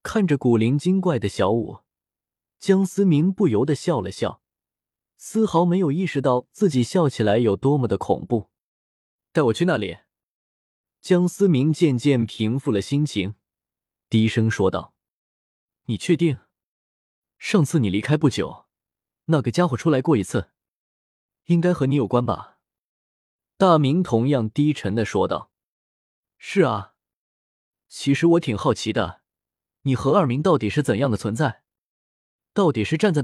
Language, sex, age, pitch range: Chinese, male, 20-39, 100-160 Hz